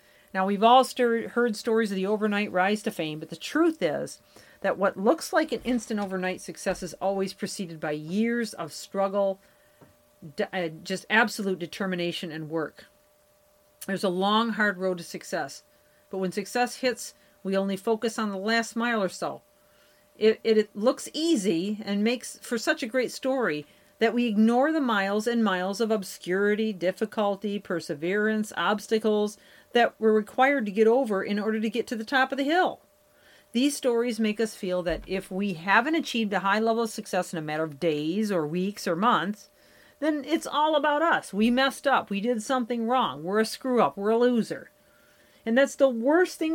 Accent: American